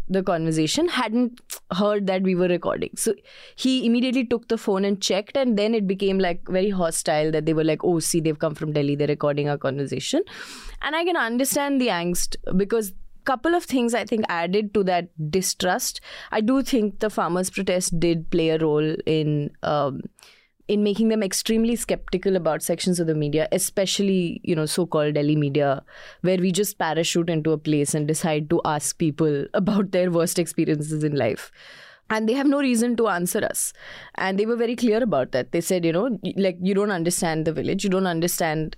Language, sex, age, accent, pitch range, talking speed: English, female, 20-39, Indian, 165-220 Hz, 200 wpm